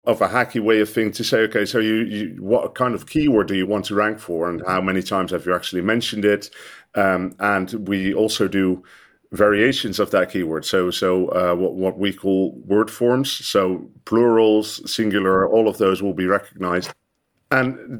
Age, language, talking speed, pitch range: 40-59, English, 195 wpm, 95-110 Hz